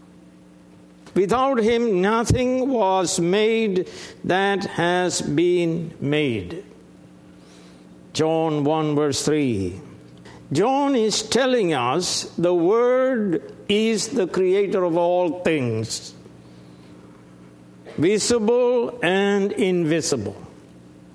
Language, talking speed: English, 80 wpm